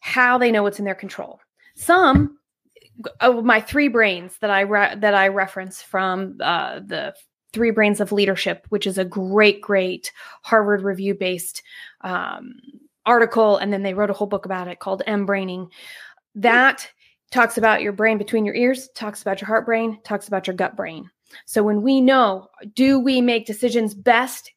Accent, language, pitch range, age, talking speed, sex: American, English, 210-245 Hz, 20-39, 180 wpm, female